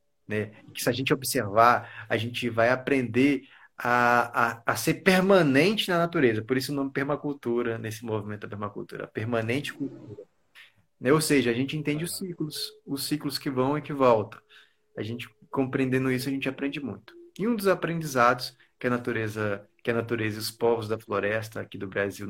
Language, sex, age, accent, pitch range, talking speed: Portuguese, male, 20-39, Brazilian, 115-150 Hz, 185 wpm